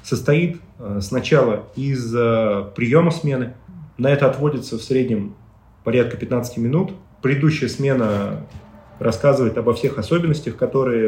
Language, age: Russian, 30-49